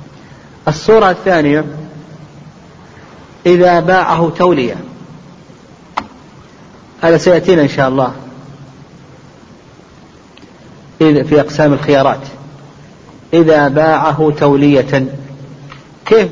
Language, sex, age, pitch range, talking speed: Arabic, male, 40-59, 140-165 Hz, 65 wpm